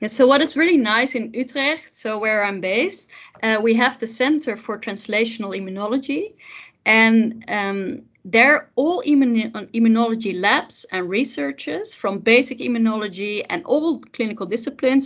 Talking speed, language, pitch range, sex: 135 wpm, English, 210-255 Hz, female